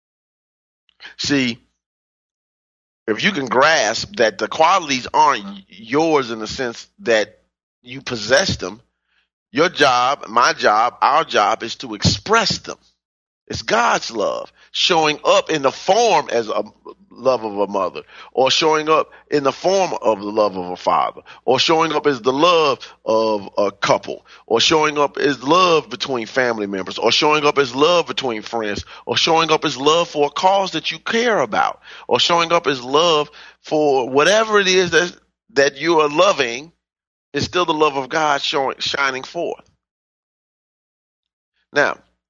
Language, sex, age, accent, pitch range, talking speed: English, male, 40-59, American, 105-150 Hz, 160 wpm